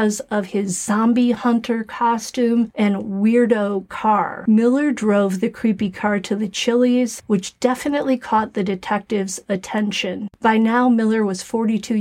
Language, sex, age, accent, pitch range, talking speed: English, female, 40-59, American, 200-245 Hz, 135 wpm